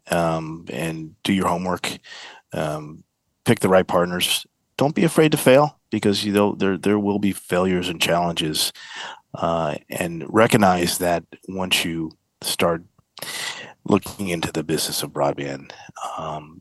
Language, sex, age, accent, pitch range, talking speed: English, male, 40-59, American, 80-95 Hz, 140 wpm